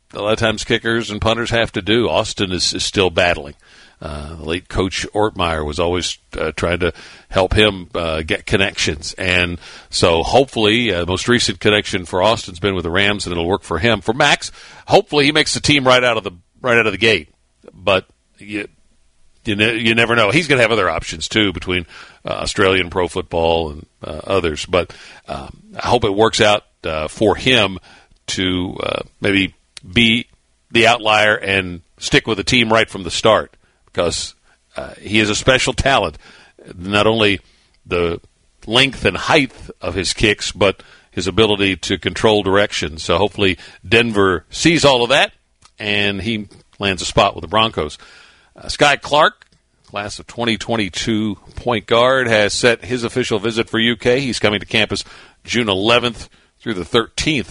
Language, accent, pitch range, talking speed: English, American, 90-115 Hz, 185 wpm